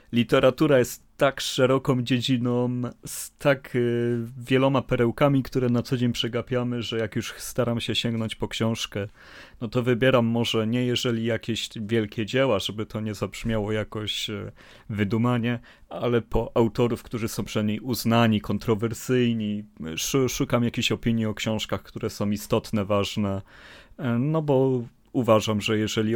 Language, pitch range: Polish, 110-130 Hz